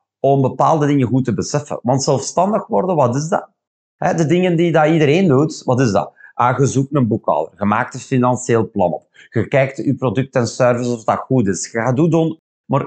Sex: male